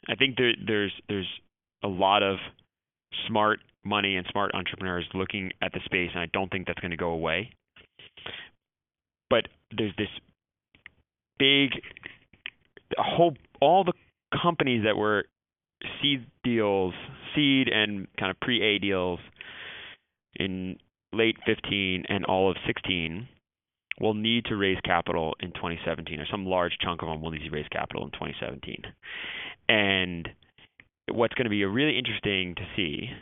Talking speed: 150 wpm